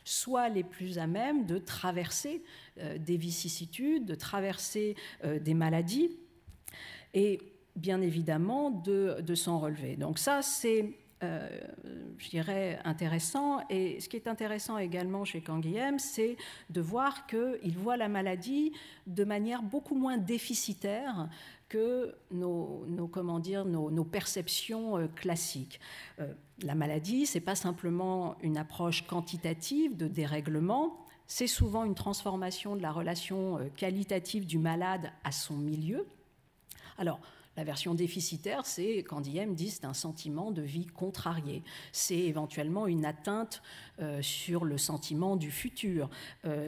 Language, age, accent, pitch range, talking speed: French, 50-69, French, 165-215 Hz, 140 wpm